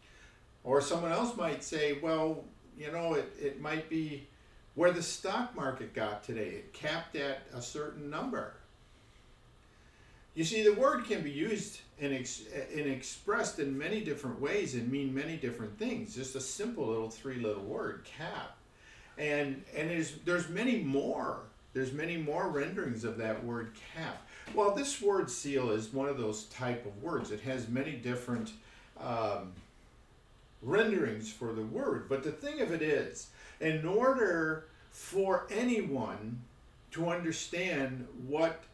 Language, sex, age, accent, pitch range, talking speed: English, male, 50-69, American, 120-175 Hz, 150 wpm